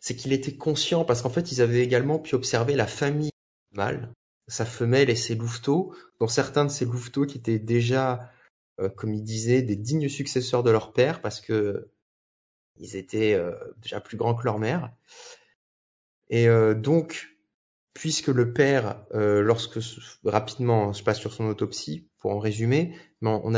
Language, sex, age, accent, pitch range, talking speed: French, male, 30-49, French, 105-130 Hz, 170 wpm